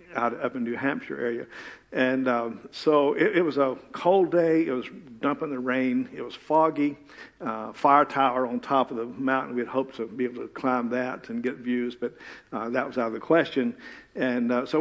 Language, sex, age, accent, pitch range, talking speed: English, male, 50-69, American, 125-155 Hz, 225 wpm